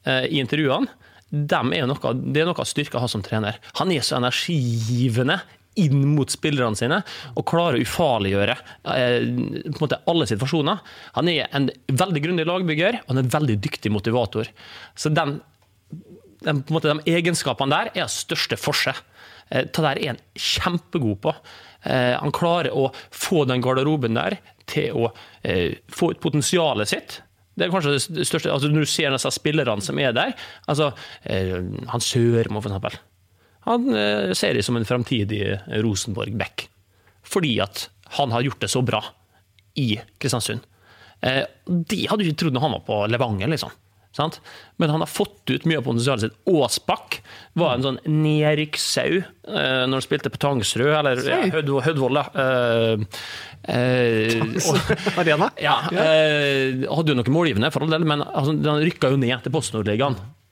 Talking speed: 155 wpm